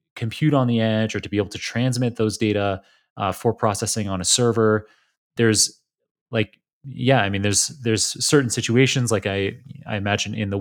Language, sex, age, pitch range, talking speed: English, male, 30-49, 100-125 Hz, 185 wpm